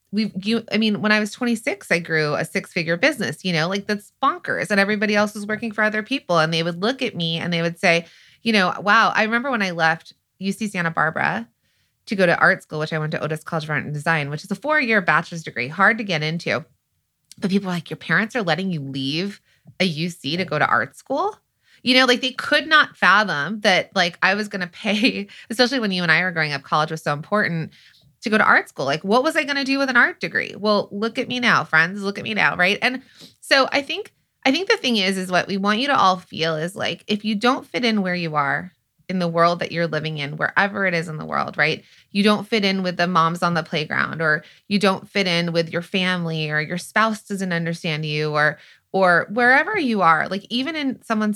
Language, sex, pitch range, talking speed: English, female, 165-215 Hz, 250 wpm